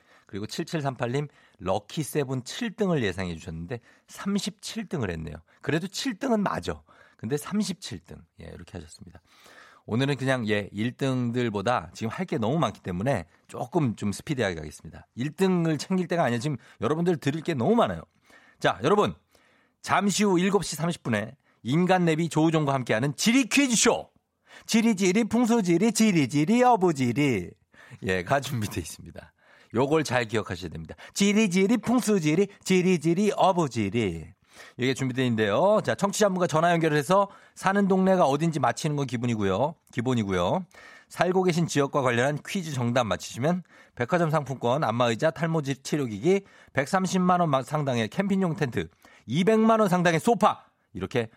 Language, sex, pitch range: Korean, male, 110-180 Hz